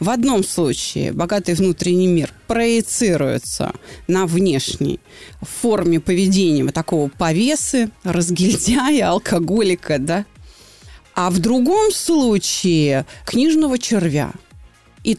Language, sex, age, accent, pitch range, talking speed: Russian, female, 30-49, native, 180-260 Hz, 90 wpm